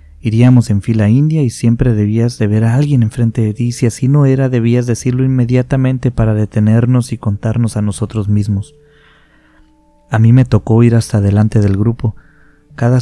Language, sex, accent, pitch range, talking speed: Spanish, male, Mexican, 105-125 Hz, 175 wpm